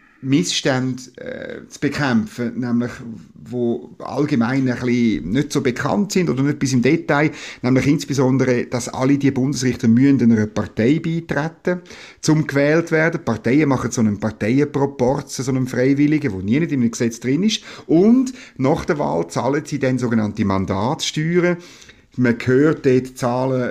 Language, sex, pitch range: German, male, 120-150 Hz